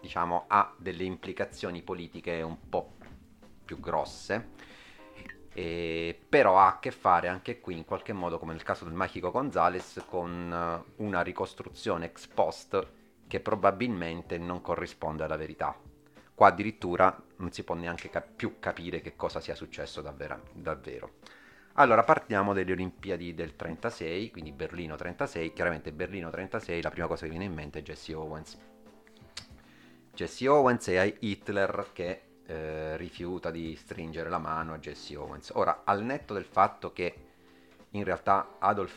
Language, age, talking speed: Italian, 30-49, 150 wpm